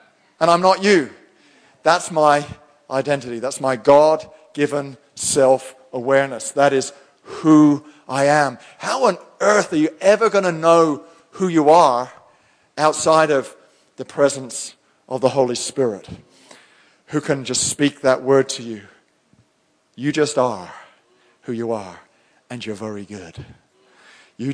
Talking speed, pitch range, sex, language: 135 wpm, 120-150 Hz, male, English